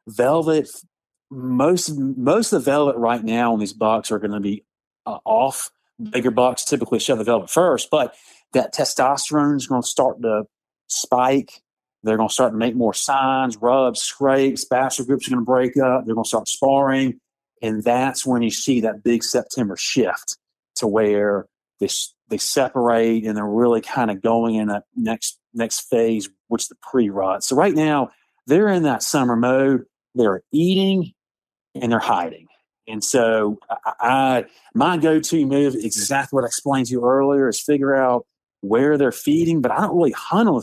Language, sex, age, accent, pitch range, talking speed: English, male, 40-59, American, 115-140 Hz, 180 wpm